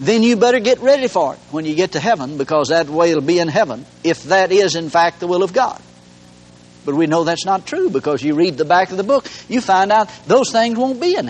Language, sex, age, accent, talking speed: English, male, 60-79, American, 265 wpm